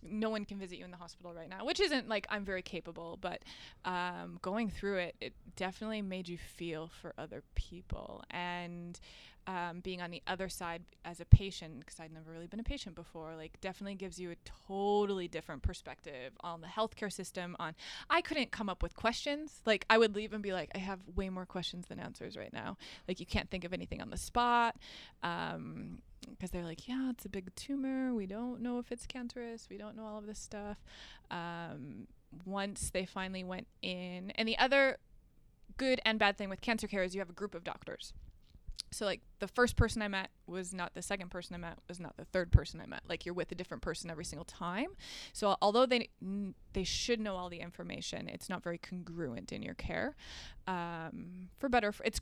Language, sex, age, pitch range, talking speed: English, female, 20-39, 175-215 Hz, 215 wpm